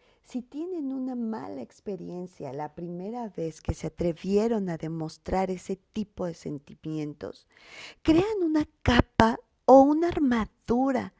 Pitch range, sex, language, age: 180-250 Hz, female, Spanish, 40-59